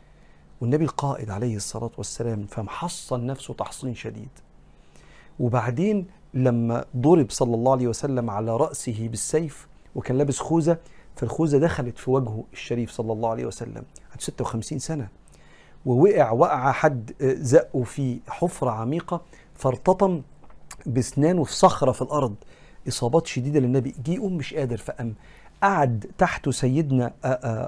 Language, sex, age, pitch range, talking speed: Arabic, male, 50-69, 120-150 Hz, 125 wpm